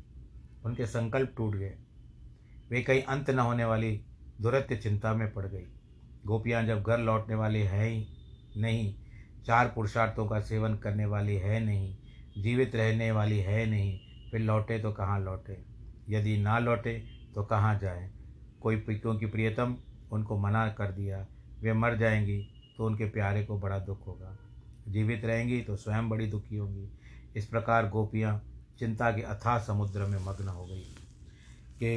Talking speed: 155 wpm